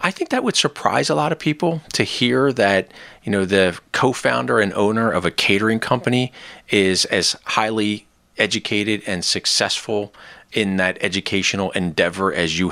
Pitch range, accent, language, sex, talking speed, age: 85-110 Hz, American, English, male, 160 wpm, 40-59